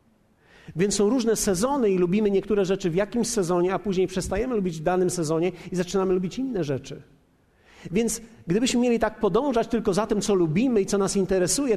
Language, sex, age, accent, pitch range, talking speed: Polish, male, 50-69, native, 160-220 Hz, 190 wpm